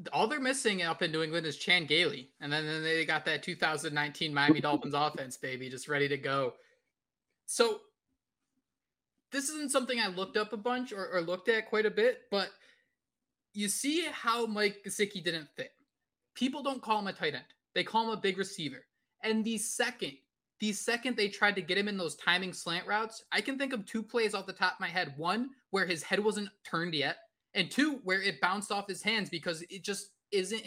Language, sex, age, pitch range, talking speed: English, male, 20-39, 175-220 Hz, 210 wpm